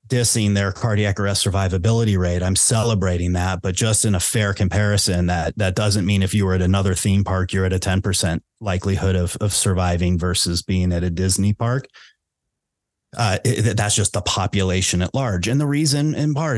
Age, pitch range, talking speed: 30-49, 95-110 Hz, 190 wpm